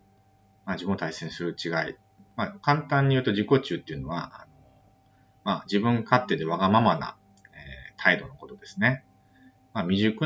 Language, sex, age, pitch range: Japanese, male, 30-49, 95-135 Hz